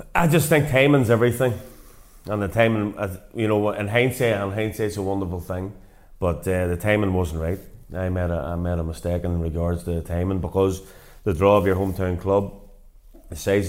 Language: English